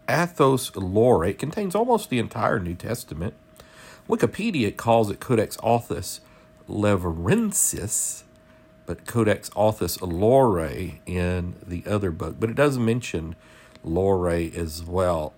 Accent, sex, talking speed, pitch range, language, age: American, male, 115 wpm, 90-115 Hz, English, 50-69